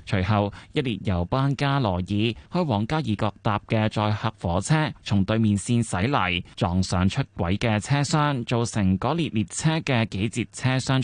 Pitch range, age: 100-135 Hz, 20-39